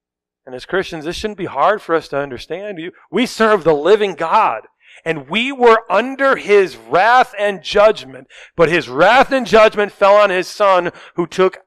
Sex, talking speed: male, 185 wpm